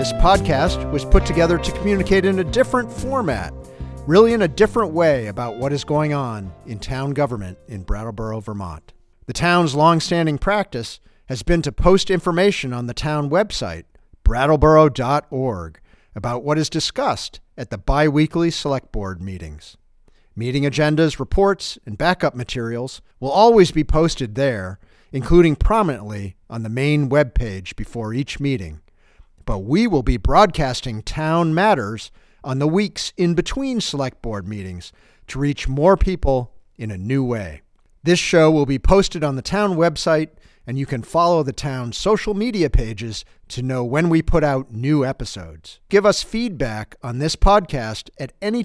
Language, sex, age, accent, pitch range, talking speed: English, male, 50-69, American, 110-165 Hz, 160 wpm